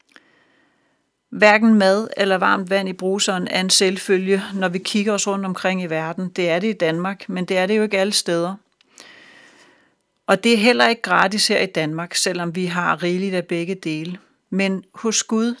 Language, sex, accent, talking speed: Danish, female, native, 190 wpm